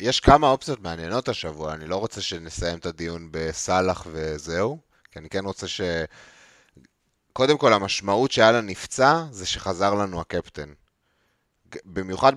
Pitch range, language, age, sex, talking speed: 85-110 Hz, Hebrew, 30-49, male, 140 wpm